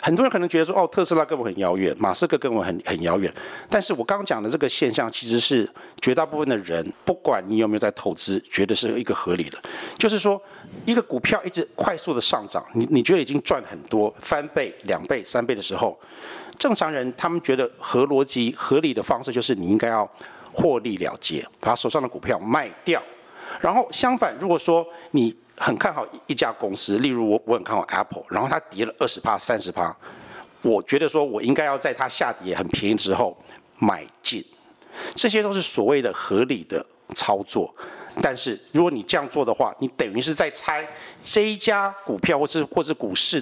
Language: Chinese